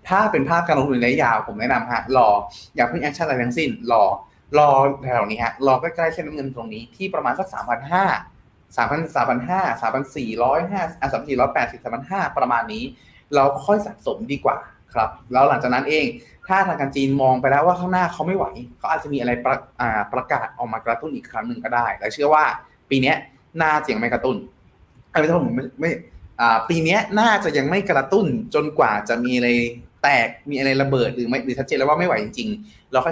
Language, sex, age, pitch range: Thai, male, 20-39, 125-160 Hz